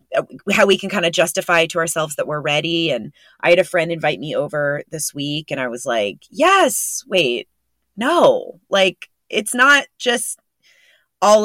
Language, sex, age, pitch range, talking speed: English, female, 20-39, 150-195 Hz, 175 wpm